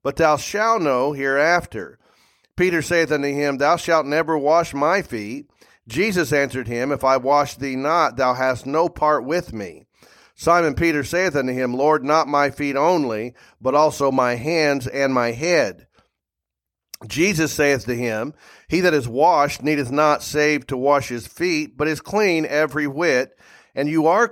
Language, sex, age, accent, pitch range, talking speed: English, male, 40-59, American, 130-160 Hz, 170 wpm